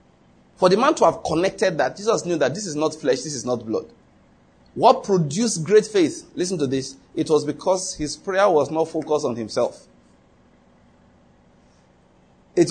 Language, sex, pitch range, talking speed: English, male, 140-225 Hz, 170 wpm